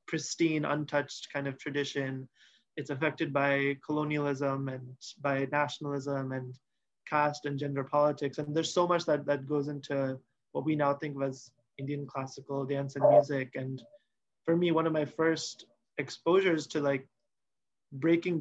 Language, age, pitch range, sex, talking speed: Tamil, 20-39, 135-150 Hz, male, 155 wpm